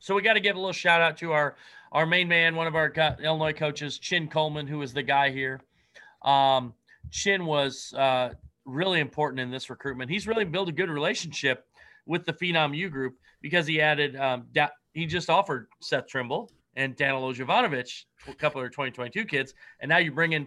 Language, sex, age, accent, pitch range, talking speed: English, male, 30-49, American, 130-165 Hz, 205 wpm